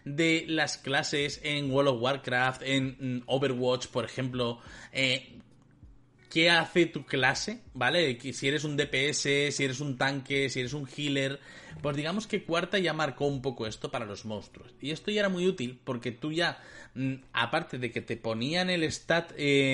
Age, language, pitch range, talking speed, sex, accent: 30-49, Spanish, 125-155 Hz, 175 wpm, male, Spanish